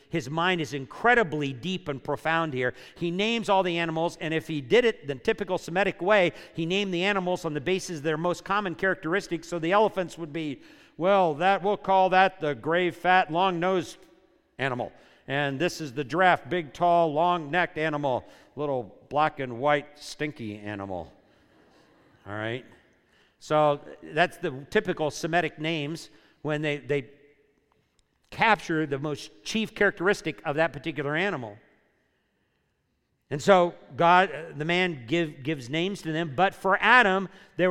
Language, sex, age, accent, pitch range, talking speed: English, male, 50-69, American, 135-180 Hz, 155 wpm